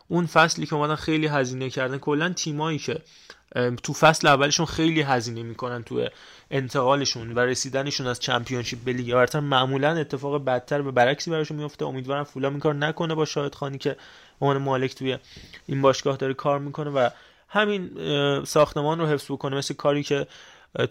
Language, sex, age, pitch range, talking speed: Persian, male, 20-39, 125-150 Hz, 165 wpm